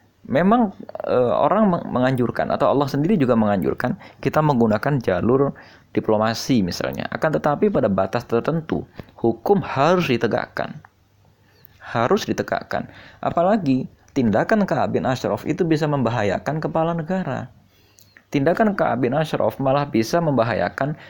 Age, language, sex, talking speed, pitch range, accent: 20-39, Indonesian, male, 115 wpm, 105-140 Hz, native